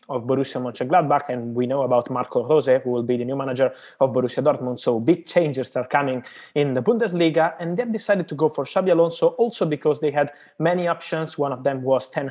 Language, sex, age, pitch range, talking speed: English, male, 20-39, 130-165 Hz, 220 wpm